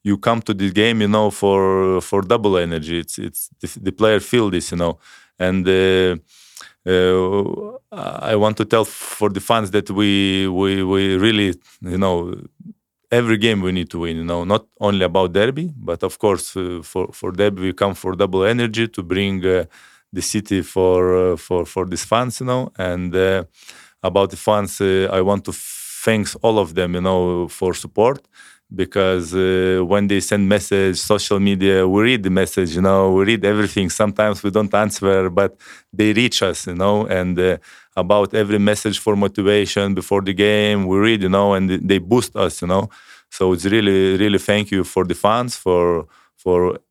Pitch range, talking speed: 95-105 Hz, 190 wpm